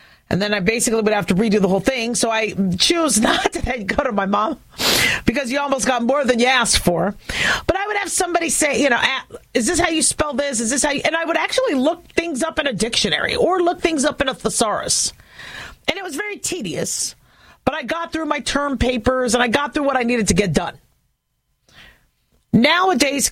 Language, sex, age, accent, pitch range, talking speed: English, female, 40-59, American, 230-315 Hz, 225 wpm